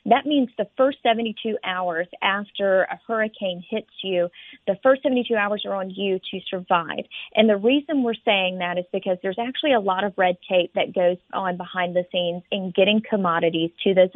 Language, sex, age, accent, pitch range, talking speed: English, female, 40-59, American, 185-230 Hz, 195 wpm